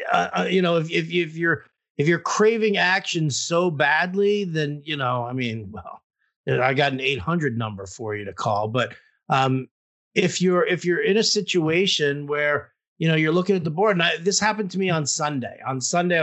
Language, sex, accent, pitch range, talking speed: English, male, American, 145-190 Hz, 210 wpm